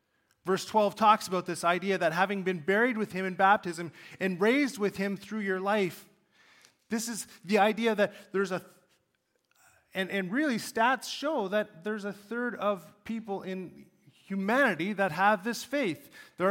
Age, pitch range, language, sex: 30-49, 180-225 Hz, English, male